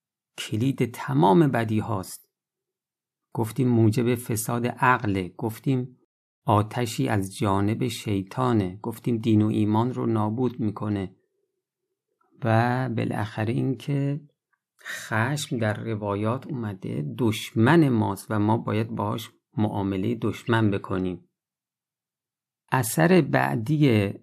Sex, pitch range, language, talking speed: male, 105-130 Hz, Persian, 95 wpm